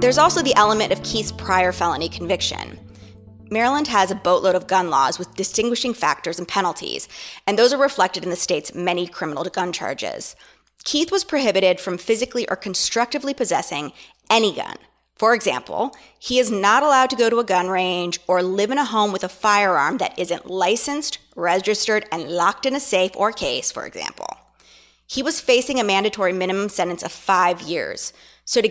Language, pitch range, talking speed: English, 180-250 Hz, 180 wpm